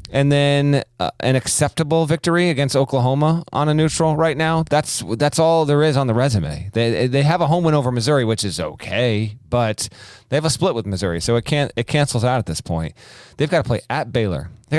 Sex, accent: male, American